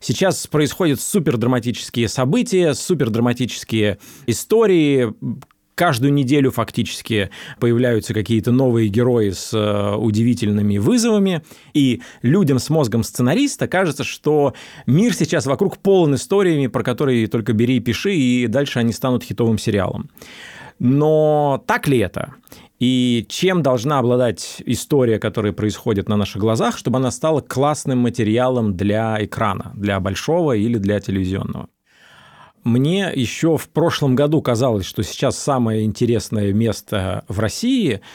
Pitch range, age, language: 110-140 Hz, 20-39, Russian